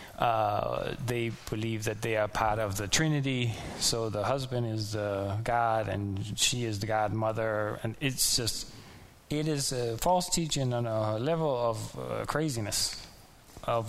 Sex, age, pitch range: male, 20-39, 110-145 Hz